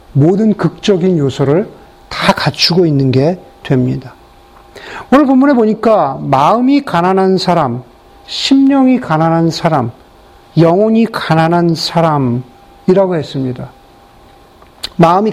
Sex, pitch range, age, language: male, 155-220 Hz, 40-59, Korean